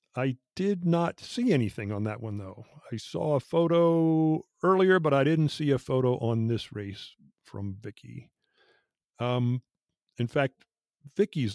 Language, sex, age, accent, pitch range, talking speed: English, male, 50-69, American, 120-170 Hz, 150 wpm